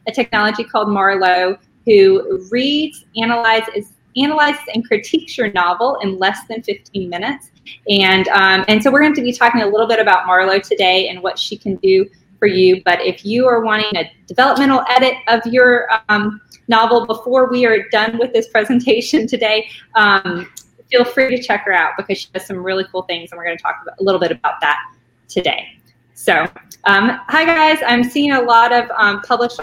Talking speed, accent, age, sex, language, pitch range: 190 wpm, American, 20-39, female, English, 185-240 Hz